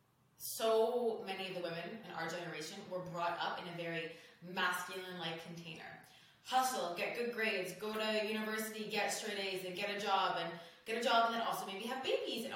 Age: 20-39